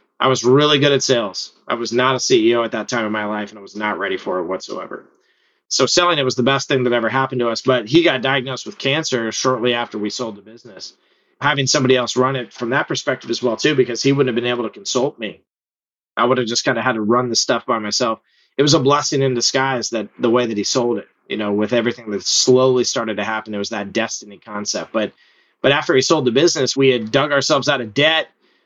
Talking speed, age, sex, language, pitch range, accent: 260 wpm, 30-49, male, English, 115-140 Hz, American